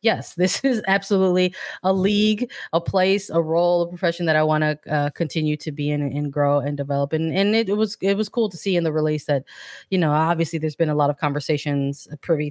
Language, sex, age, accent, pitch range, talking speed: English, female, 20-39, American, 155-185 Hz, 240 wpm